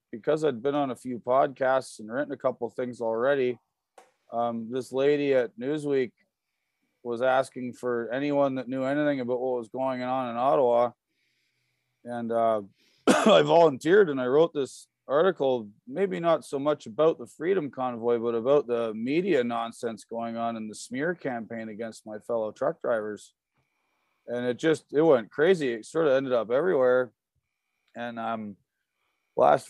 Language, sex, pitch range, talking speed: English, male, 120-145 Hz, 165 wpm